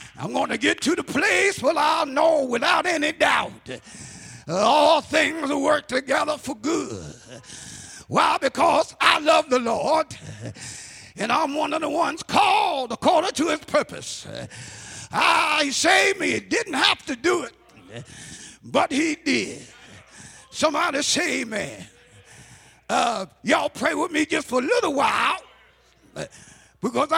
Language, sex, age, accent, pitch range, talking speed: English, male, 50-69, American, 275-320 Hz, 145 wpm